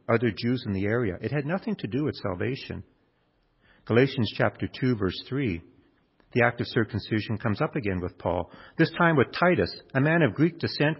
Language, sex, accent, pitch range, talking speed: English, male, American, 110-150 Hz, 190 wpm